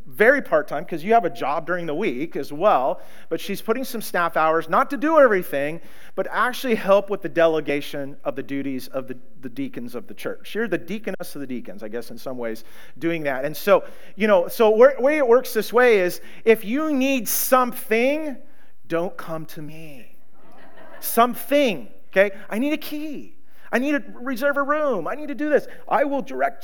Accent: American